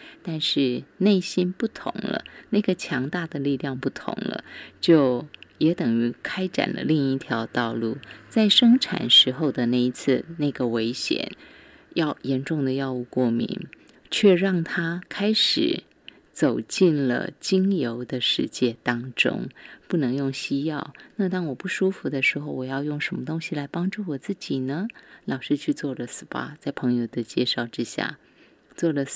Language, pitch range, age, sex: Chinese, 130-180 Hz, 20-39, female